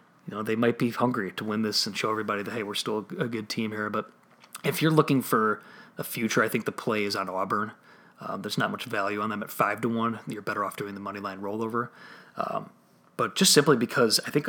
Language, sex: English, male